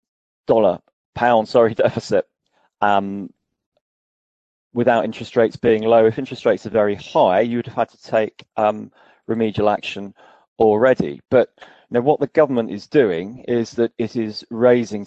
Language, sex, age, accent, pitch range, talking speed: English, male, 30-49, British, 105-120 Hz, 145 wpm